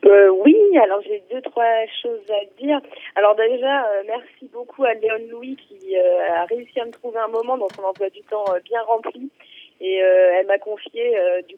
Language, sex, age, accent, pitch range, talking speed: French, female, 20-39, French, 195-260 Hz, 205 wpm